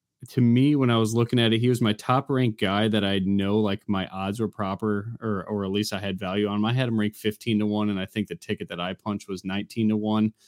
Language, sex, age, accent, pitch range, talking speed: English, male, 20-39, American, 95-110 Hz, 285 wpm